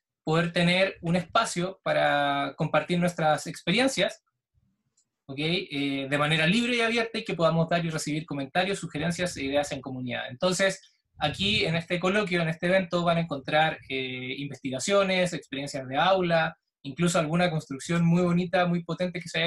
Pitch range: 150-190 Hz